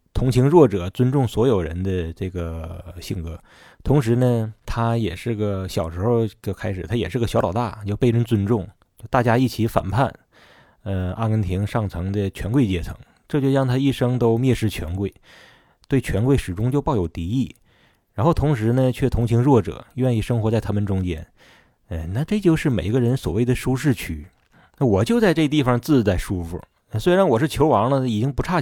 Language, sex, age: Chinese, male, 20-39